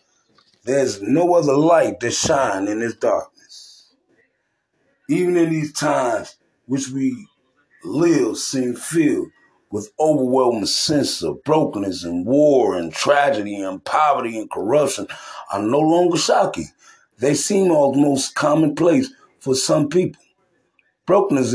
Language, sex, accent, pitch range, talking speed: English, male, American, 115-165 Hz, 120 wpm